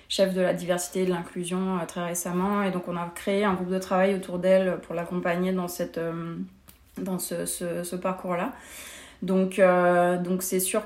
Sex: female